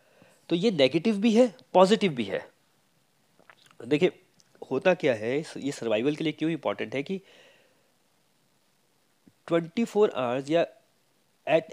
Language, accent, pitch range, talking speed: Hindi, native, 140-180 Hz, 130 wpm